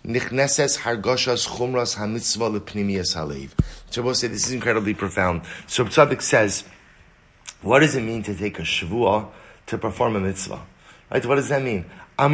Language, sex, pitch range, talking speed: English, male, 105-140 Hz, 135 wpm